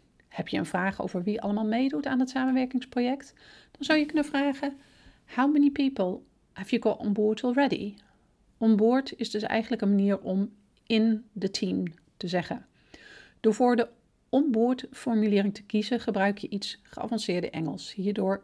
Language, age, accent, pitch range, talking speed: Dutch, 40-59, Dutch, 190-245 Hz, 170 wpm